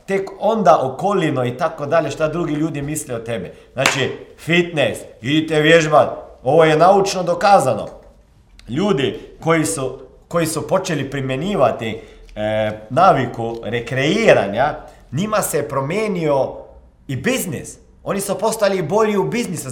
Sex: male